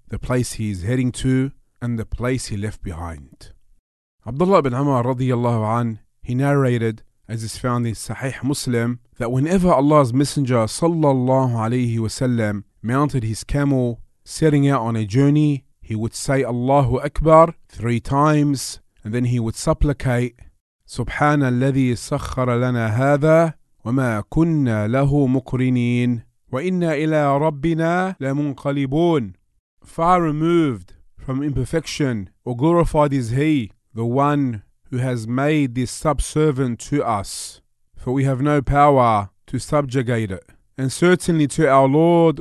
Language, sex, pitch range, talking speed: English, male, 120-150 Hz, 125 wpm